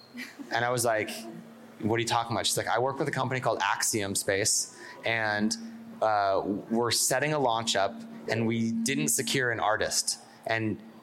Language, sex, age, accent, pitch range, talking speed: English, male, 20-39, American, 115-130 Hz, 180 wpm